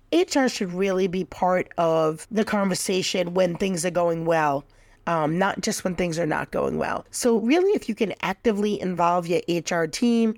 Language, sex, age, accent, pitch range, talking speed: English, female, 40-59, American, 175-215 Hz, 185 wpm